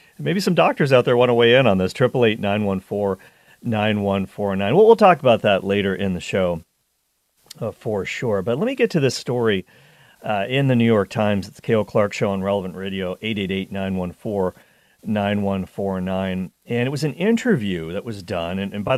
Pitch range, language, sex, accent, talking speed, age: 95-120 Hz, English, male, American, 225 wpm, 50-69